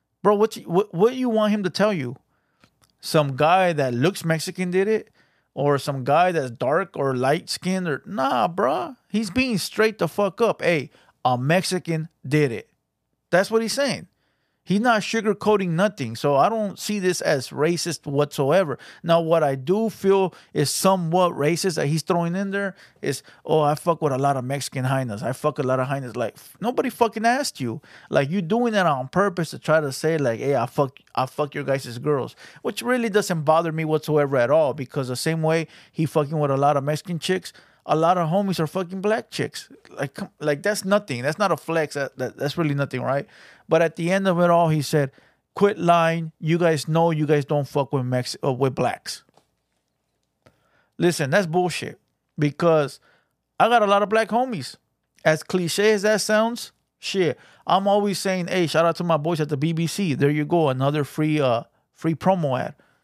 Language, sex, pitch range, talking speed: English, male, 145-195 Hz, 200 wpm